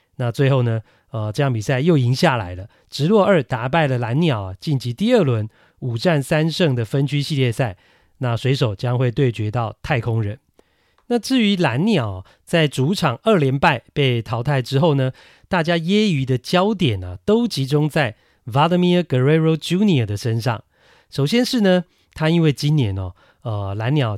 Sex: male